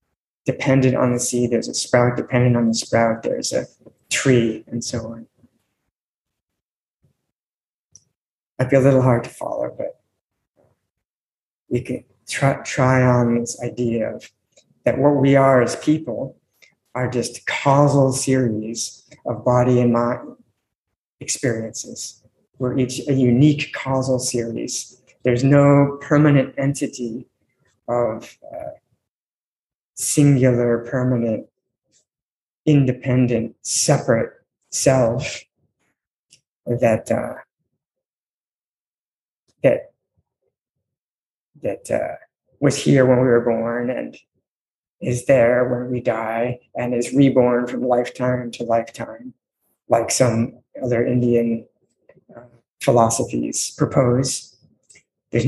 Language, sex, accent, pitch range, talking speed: English, male, American, 120-135 Hz, 105 wpm